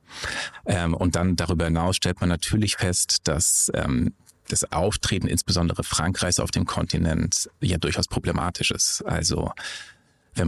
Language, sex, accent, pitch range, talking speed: German, male, German, 85-100 Hz, 135 wpm